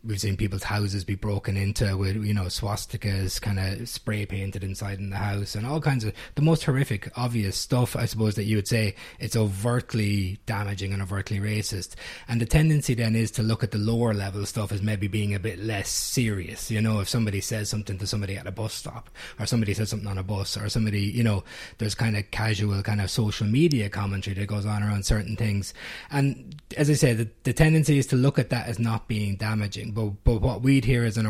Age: 20-39